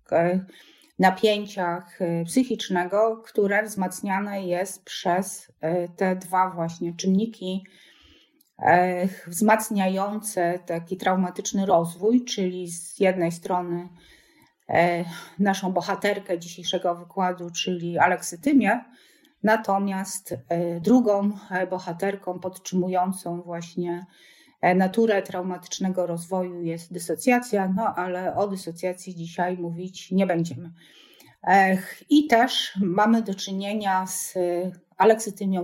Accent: native